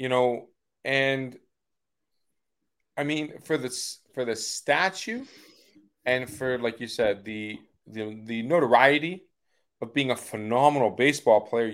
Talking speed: 130 wpm